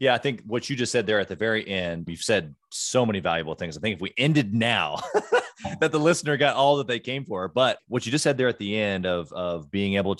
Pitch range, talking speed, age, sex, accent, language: 95-125 Hz, 275 wpm, 30-49, male, American, English